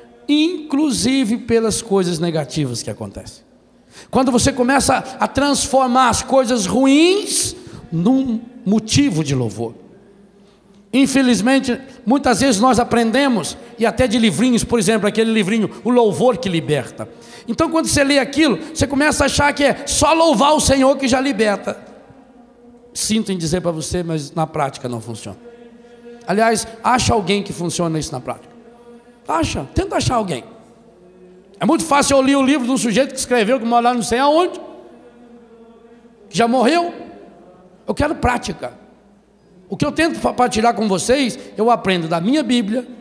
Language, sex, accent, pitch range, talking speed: Portuguese, male, Brazilian, 200-260 Hz, 155 wpm